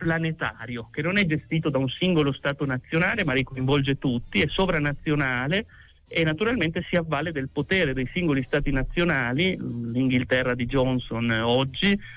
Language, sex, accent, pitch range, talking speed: Italian, male, native, 125-165 Hz, 150 wpm